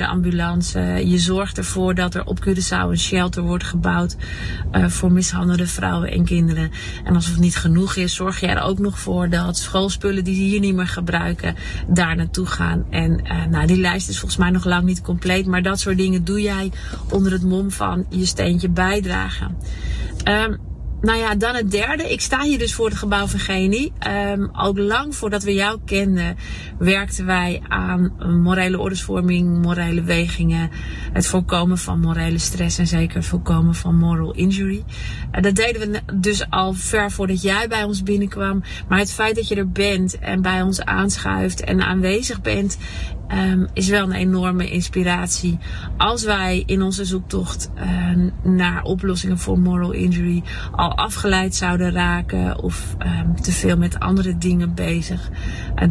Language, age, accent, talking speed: Dutch, 30-49, Dutch, 175 wpm